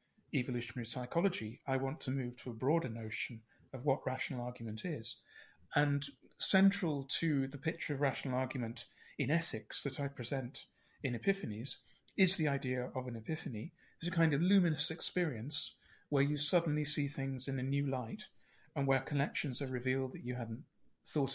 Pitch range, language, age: 130-155 Hz, English, 40-59